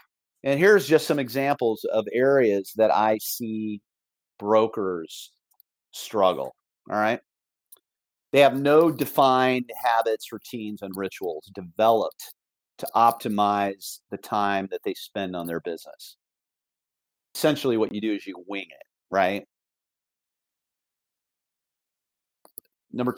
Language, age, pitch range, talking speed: English, 40-59, 90-115 Hz, 110 wpm